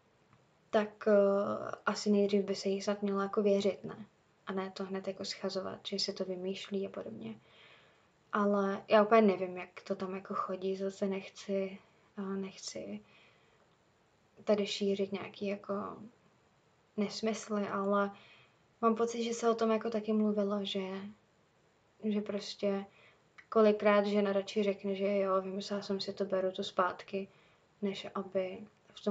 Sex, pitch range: female, 195-215 Hz